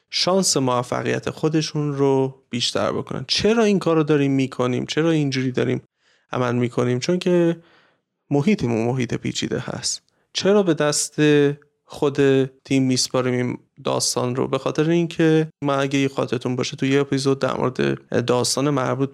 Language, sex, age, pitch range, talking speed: Persian, male, 30-49, 125-160 Hz, 135 wpm